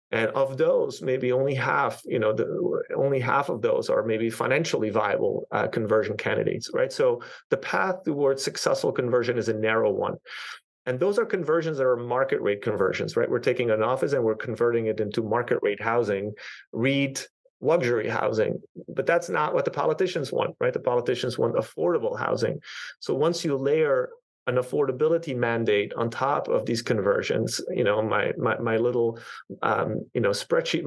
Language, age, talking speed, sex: English, 30-49, 175 wpm, male